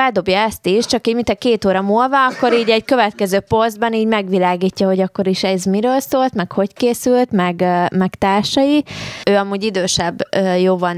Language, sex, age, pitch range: Hungarian, female, 20-39, 175-200 Hz